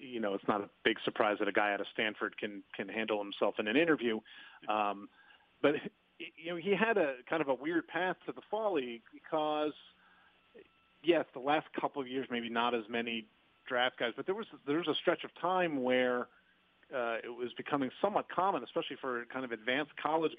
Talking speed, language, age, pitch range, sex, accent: 205 wpm, English, 40-59, 115-150 Hz, male, American